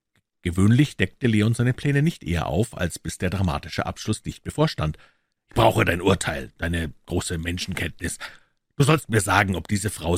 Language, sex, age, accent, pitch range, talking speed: German, male, 50-69, German, 85-105 Hz, 170 wpm